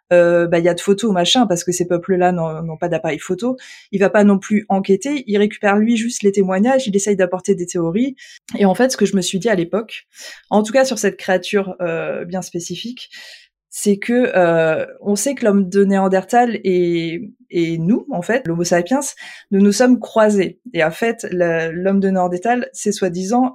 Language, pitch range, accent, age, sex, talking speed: French, 185-230 Hz, French, 20-39, female, 210 wpm